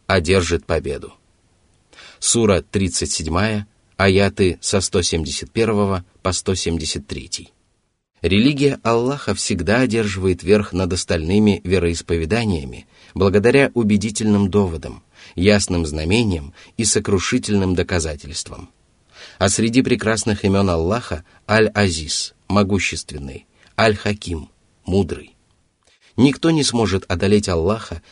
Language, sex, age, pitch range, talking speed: Russian, male, 30-49, 85-105 Hz, 85 wpm